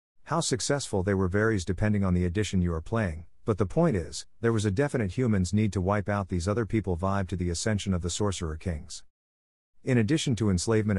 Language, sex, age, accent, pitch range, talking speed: English, male, 50-69, American, 90-115 Hz, 220 wpm